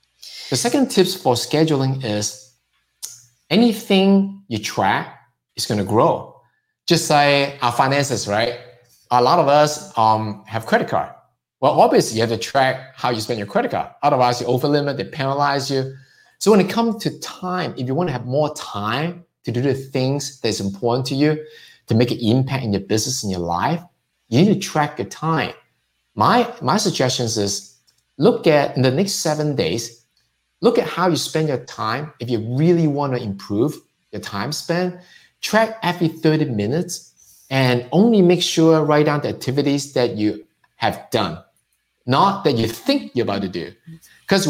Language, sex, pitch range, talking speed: English, male, 120-165 Hz, 180 wpm